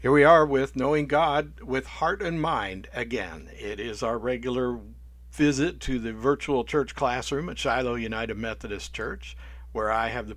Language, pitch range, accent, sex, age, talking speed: English, 100-135 Hz, American, male, 60-79, 175 wpm